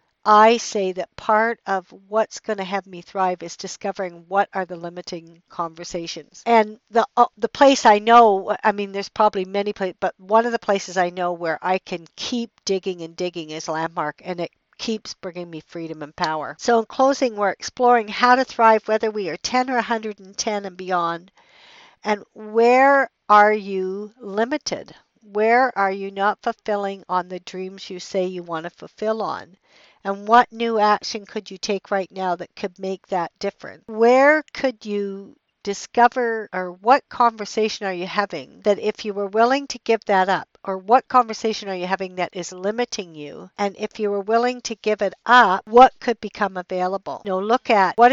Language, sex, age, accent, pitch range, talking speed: English, female, 60-79, American, 185-230 Hz, 190 wpm